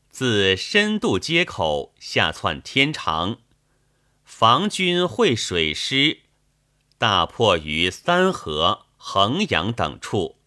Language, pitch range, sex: Chinese, 105-145 Hz, male